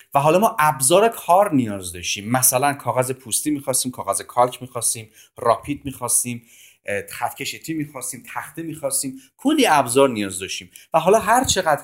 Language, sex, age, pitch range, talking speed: Persian, male, 30-49, 120-170 Hz, 145 wpm